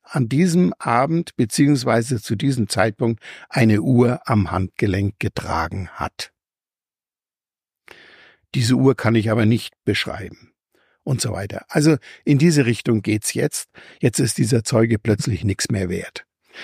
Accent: German